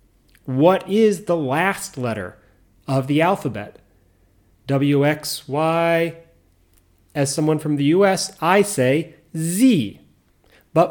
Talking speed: 100 wpm